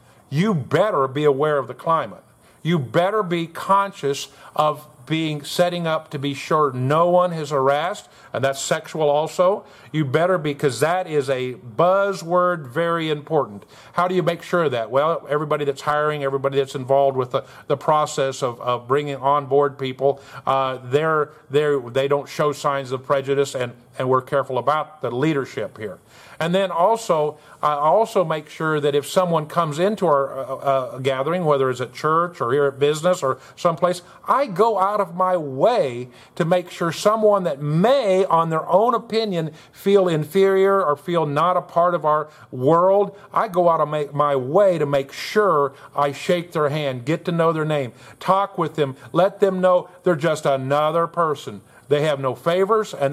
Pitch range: 140-175 Hz